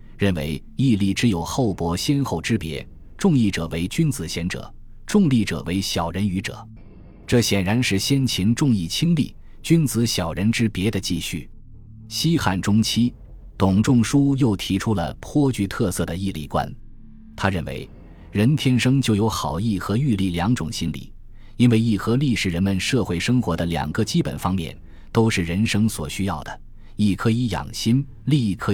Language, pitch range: Chinese, 90-115 Hz